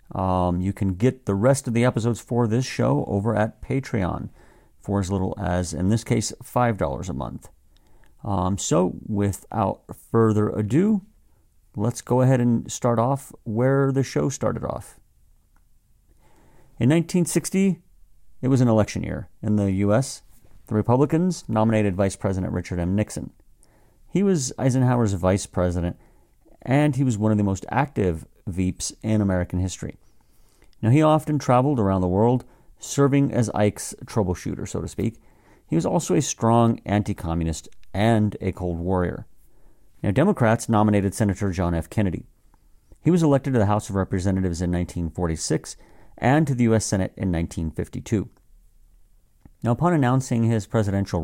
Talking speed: 150 wpm